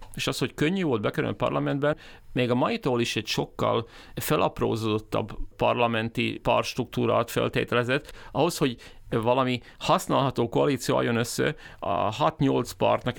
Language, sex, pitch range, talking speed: Hungarian, male, 115-140 Hz, 125 wpm